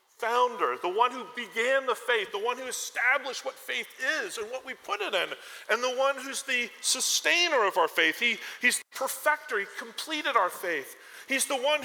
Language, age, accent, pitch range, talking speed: English, 40-59, American, 240-385 Hz, 205 wpm